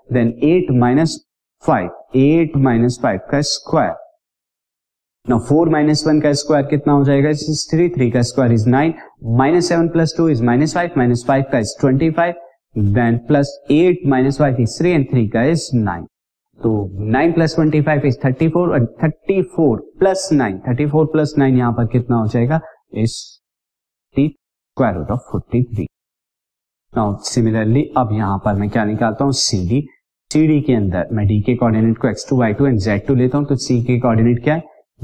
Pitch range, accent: 115-150 Hz, native